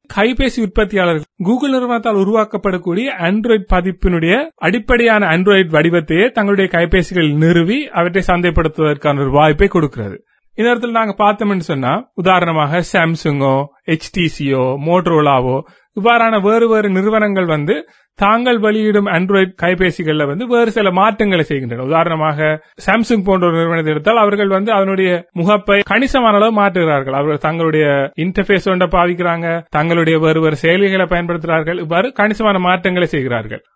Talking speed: 120 wpm